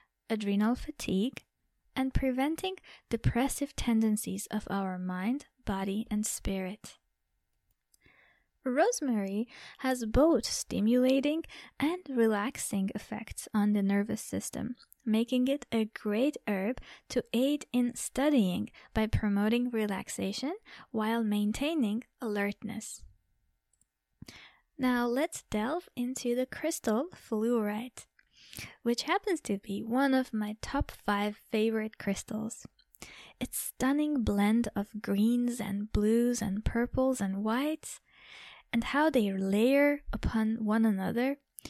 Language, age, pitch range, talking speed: English, 20-39, 210-265 Hz, 105 wpm